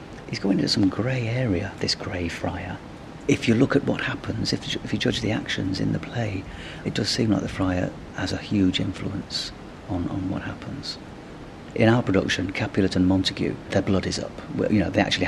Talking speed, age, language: 210 wpm, 40-59, English